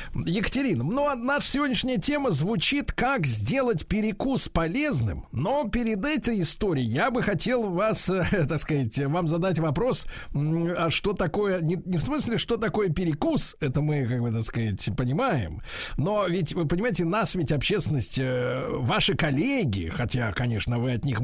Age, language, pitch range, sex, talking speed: 50-69, Russian, 135-200 Hz, male, 155 wpm